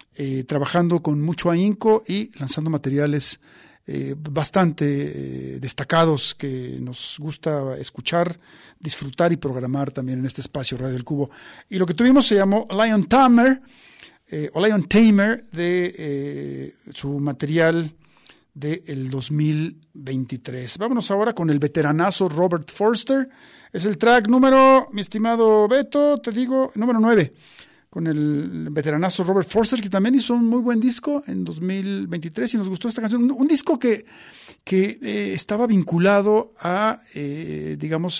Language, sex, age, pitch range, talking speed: Spanish, male, 50-69, 140-200 Hz, 145 wpm